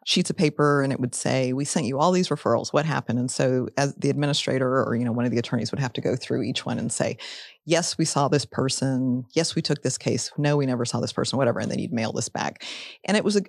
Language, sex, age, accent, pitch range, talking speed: English, female, 30-49, American, 125-155 Hz, 275 wpm